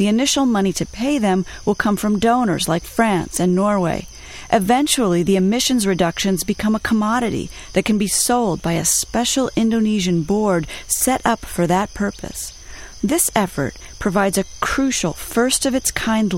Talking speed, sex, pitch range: 150 wpm, female, 175-225 Hz